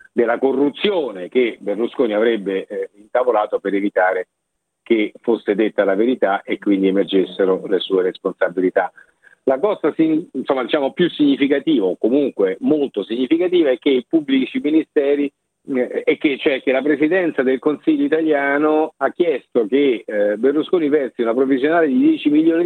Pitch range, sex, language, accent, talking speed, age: 120-165 Hz, male, Italian, native, 150 wpm, 50-69